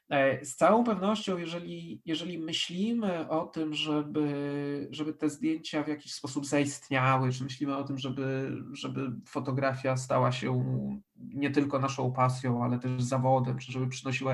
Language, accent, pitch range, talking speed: Polish, native, 135-180 Hz, 145 wpm